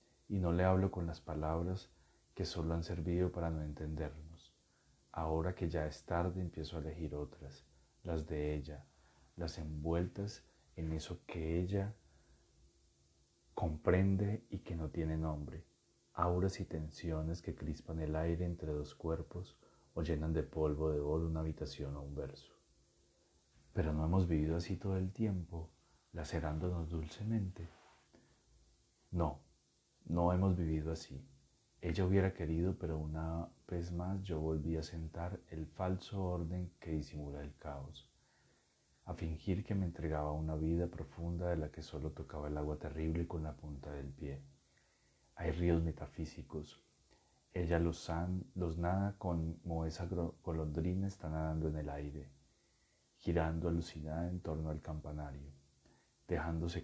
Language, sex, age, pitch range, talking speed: Spanish, male, 30-49, 75-85 Hz, 145 wpm